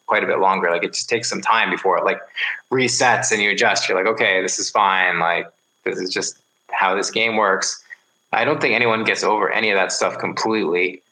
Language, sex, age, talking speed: English, male, 20-39, 220 wpm